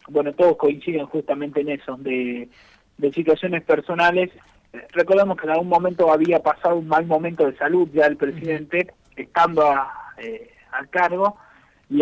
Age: 40-59